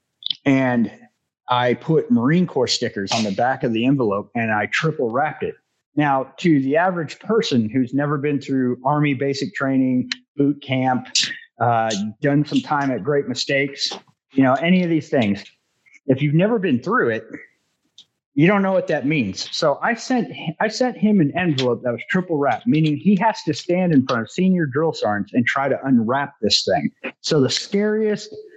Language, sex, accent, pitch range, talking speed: English, male, American, 130-200 Hz, 185 wpm